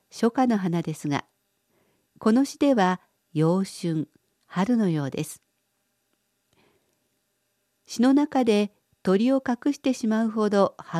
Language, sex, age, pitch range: Japanese, female, 50-69, 165-220 Hz